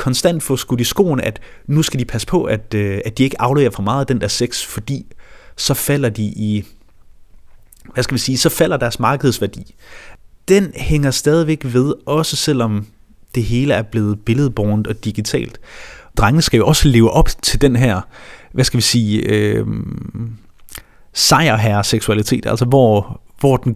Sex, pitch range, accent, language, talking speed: male, 110-140 Hz, native, Danish, 170 wpm